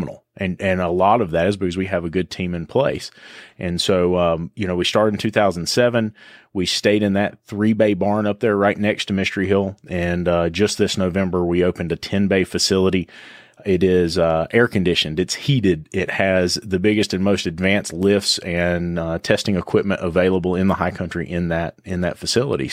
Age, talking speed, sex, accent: 30-49, 195 wpm, male, American